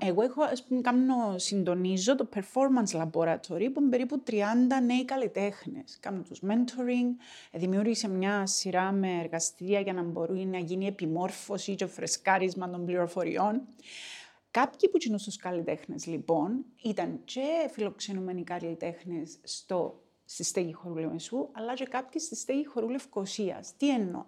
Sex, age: female, 30-49